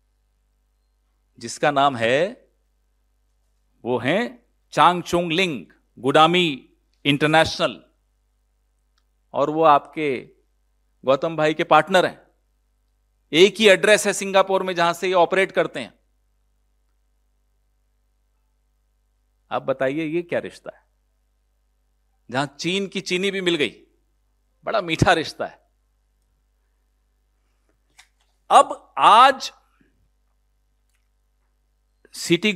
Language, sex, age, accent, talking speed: Hindi, male, 50-69, native, 90 wpm